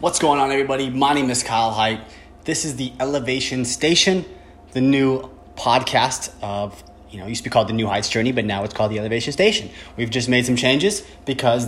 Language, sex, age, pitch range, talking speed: English, male, 20-39, 115-135 Hz, 215 wpm